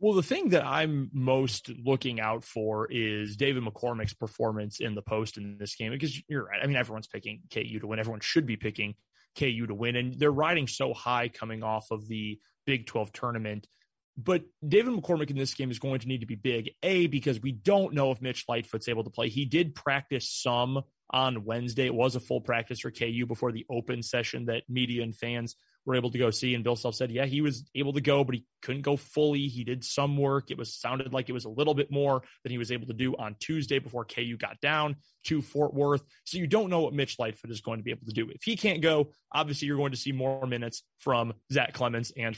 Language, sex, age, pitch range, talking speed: English, male, 20-39, 115-140 Hz, 240 wpm